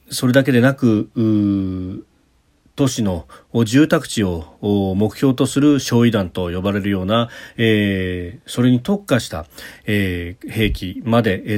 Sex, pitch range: male, 100-130 Hz